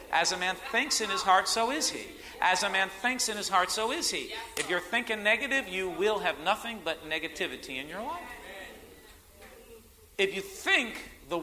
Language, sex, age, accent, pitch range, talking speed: English, male, 50-69, American, 145-220 Hz, 195 wpm